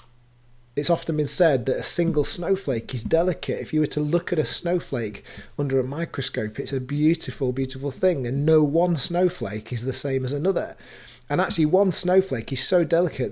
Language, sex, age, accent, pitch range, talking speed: English, male, 30-49, British, 120-160 Hz, 190 wpm